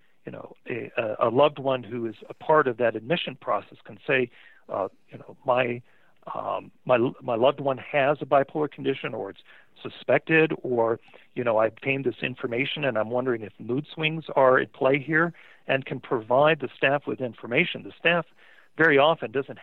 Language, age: English, 50-69